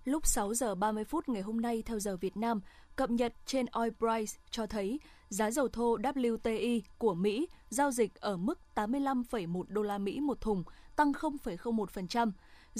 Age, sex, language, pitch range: 20-39, female, Vietnamese, 215-255 Hz